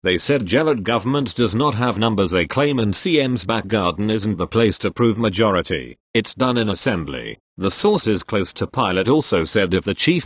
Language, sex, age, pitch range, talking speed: English, male, 40-59, 105-130 Hz, 200 wpm